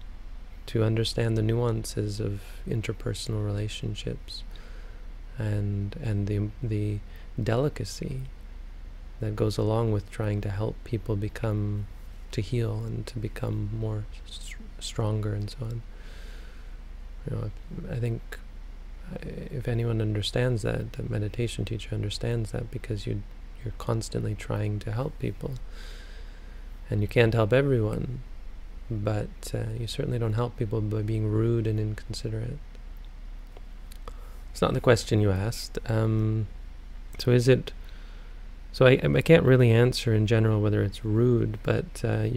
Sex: male